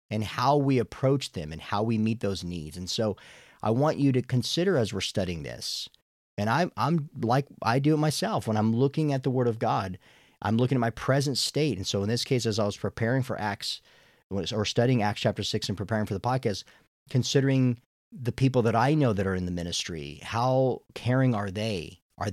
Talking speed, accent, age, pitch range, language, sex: 215 wpm, American, 40-59, 105-130 Hz, English, male